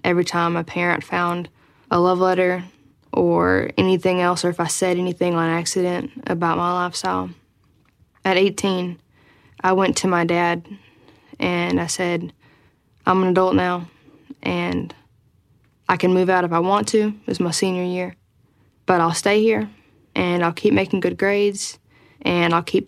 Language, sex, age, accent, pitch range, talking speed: English, female, 10-29, American, 160-185 Hz, 165 wpm